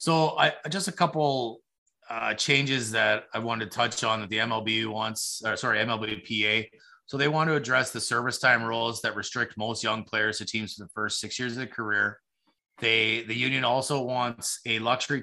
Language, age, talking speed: English, 30-49, 200 wpm